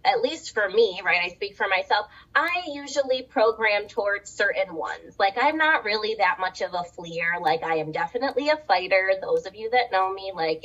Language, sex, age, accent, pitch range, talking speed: English, female, 20-39, American, 175-260 Hz, 210 wpm